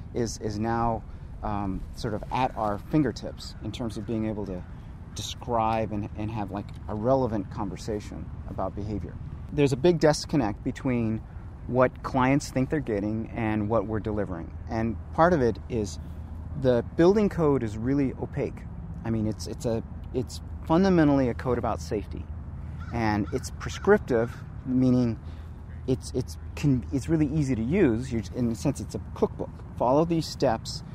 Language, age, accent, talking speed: English, 30-49, American, 155 wpm